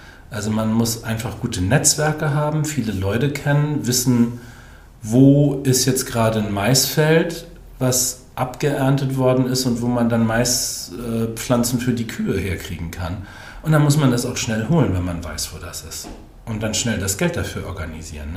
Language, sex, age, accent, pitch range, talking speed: German, male, 40-59, German, 105-135 Hz, 175 wpm